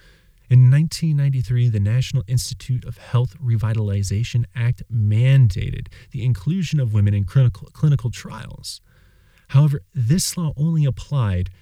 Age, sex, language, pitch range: 30-49, male, English, 105-135 Hz